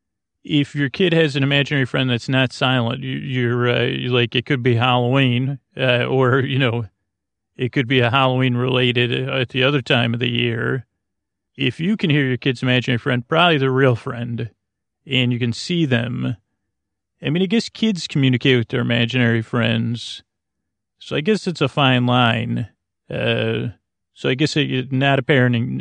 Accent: American